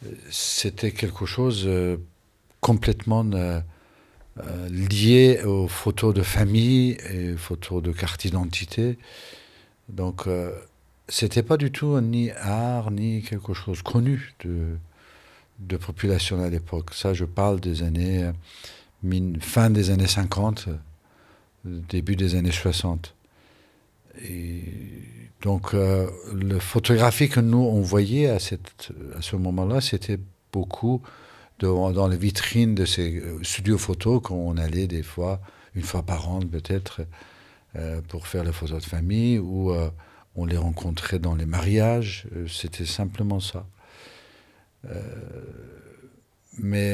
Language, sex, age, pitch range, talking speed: French, male, 60-79, 90-110 Hz, 135 wpm